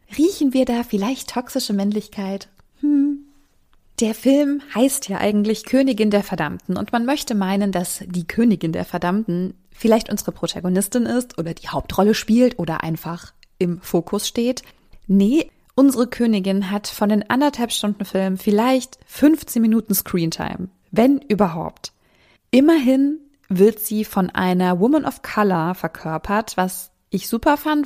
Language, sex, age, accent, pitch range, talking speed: German, female, 20-39, German, 185-240 Hz, 140 wpm